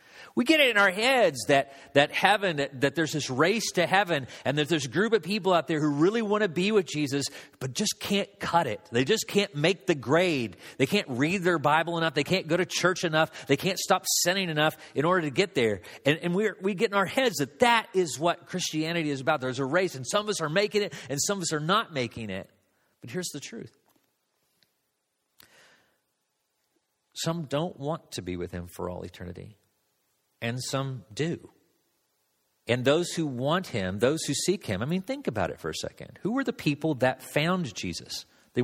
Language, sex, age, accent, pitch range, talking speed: English, male, 40-59, American, 130-185 Hz, 215 wpm